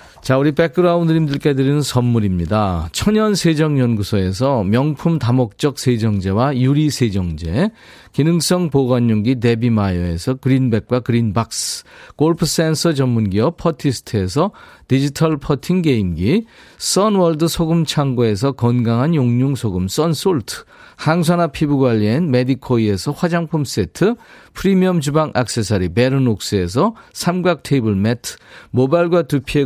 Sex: male